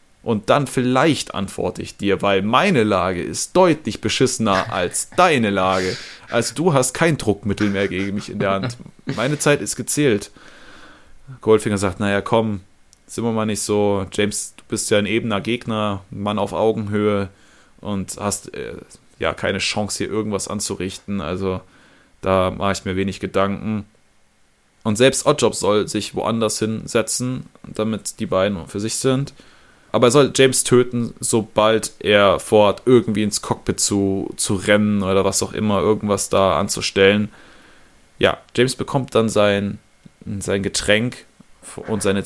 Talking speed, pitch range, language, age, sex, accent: 155 wpm, 100-120 Hz, German, 20-39, male, German